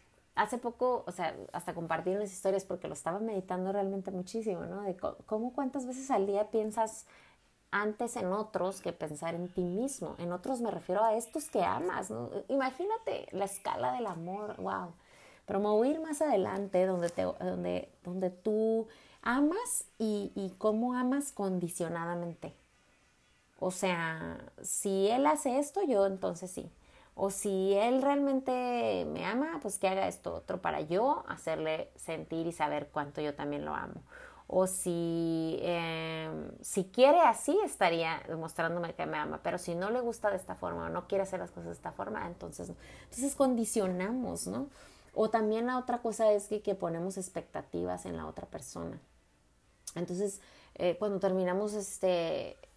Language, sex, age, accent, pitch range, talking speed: Spanish, female, 30-49, Mexican, 170-230 Hz, 160 wpm